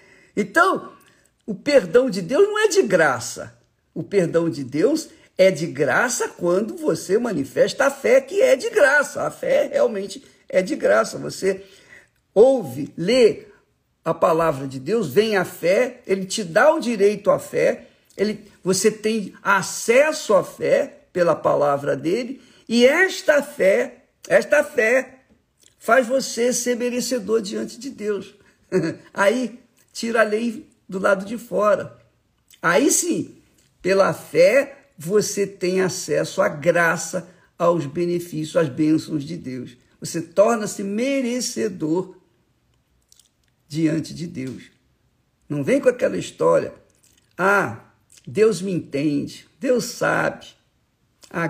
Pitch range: 170-260 Hz